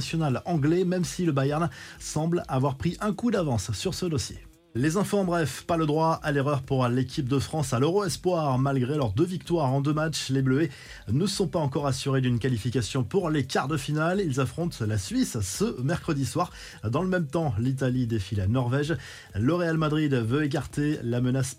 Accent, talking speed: French, 205 wpm